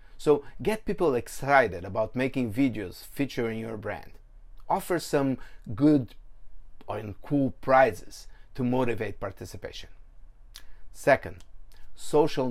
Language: English